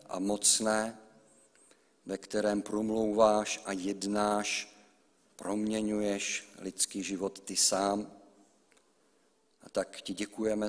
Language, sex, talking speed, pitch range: Czech, male, 90 wpm, 100-125 Hz